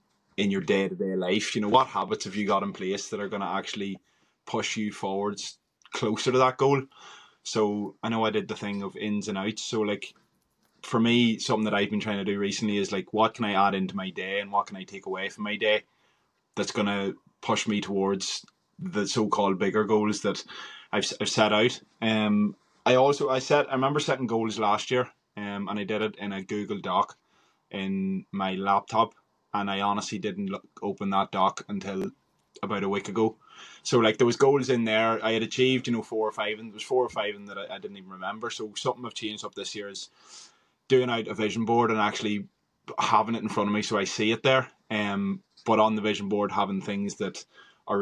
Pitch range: 100-115 Hz